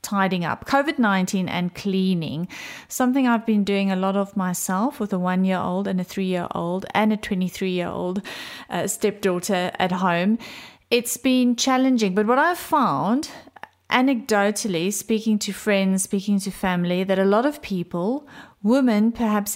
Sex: female